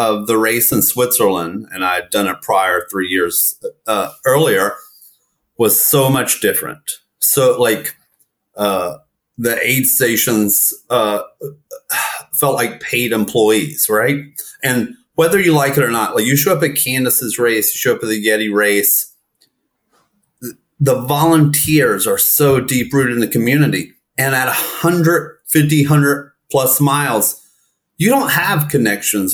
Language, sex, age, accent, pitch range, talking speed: English, male, 30-49, American, 115-160 Hz, 150 wpm